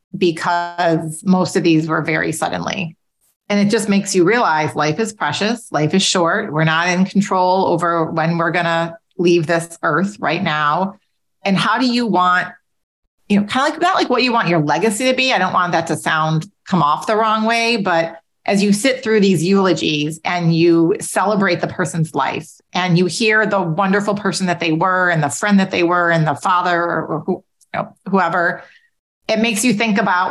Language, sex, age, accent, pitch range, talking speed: English, female, 40-59, American, 165-200 Hz, 205 wpm